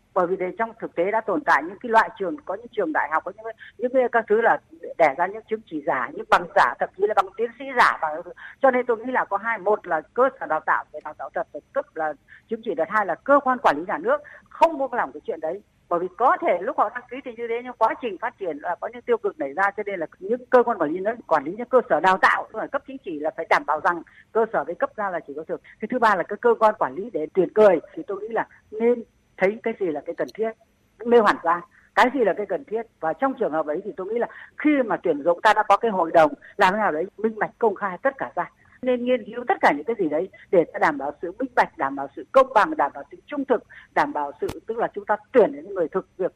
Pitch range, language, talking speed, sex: 175-250 Hz, Vietnamese, 300 wpm, female